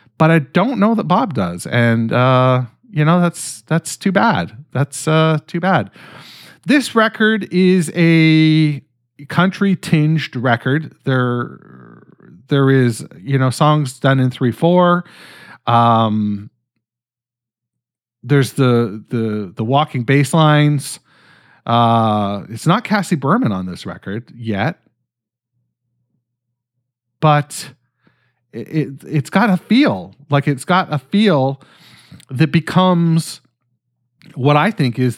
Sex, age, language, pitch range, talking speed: male, 40-59, English, 115-155 Hz, 120 wpm